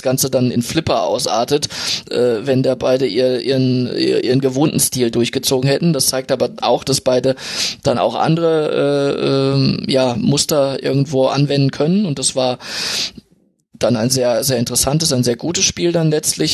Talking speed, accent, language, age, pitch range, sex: 170 wpm, German, German, 20-39, 125-145 Hz, male